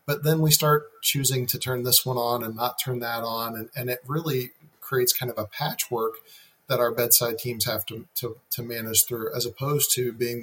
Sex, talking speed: male, 220 wpm